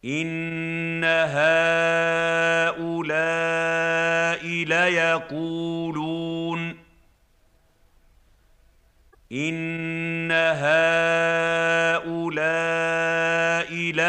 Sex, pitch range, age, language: male, 150-165 Hz, 50-69, Arabic